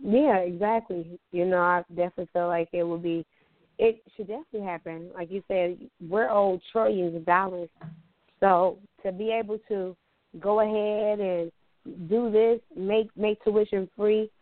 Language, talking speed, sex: English, 155 wpm, female